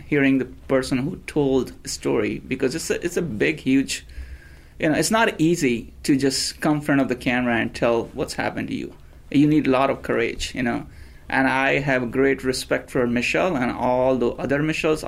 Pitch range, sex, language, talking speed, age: 110-135 Hz, male, English, 210 wpm, 30-49